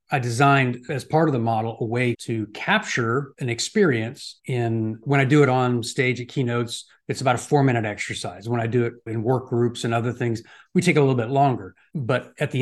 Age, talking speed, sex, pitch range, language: 40-59, 225 wpm, male, 120-150 Hz, English